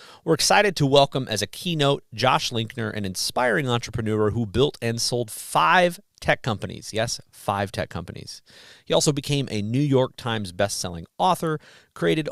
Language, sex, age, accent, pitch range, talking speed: English, male, 40-59, American, 105-145 Hz, 160 wpm